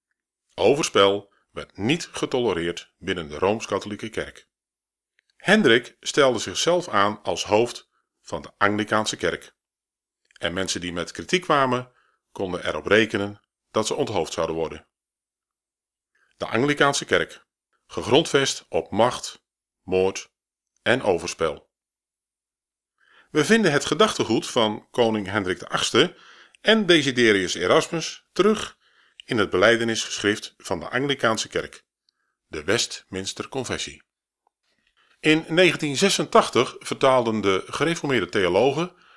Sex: male